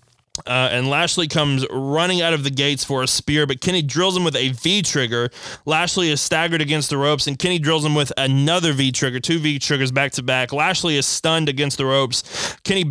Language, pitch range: English, 140-175 Hz